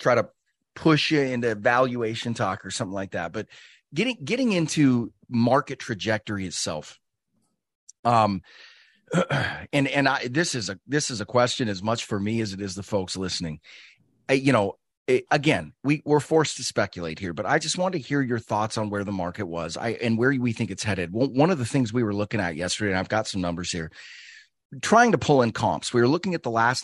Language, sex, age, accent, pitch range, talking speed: English, male, 30-49, American, 105-135 Hz, 215 wpm